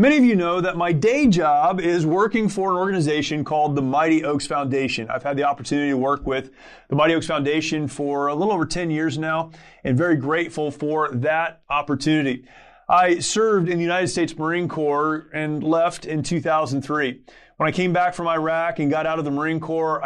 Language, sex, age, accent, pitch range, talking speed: English, male, 30-49, American, 150-175 Hz, 200 wpm